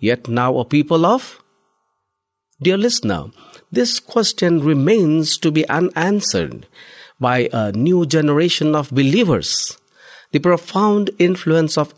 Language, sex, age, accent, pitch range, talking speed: English, male, 50-69, Indian, 125-170 Hz, 115 wpm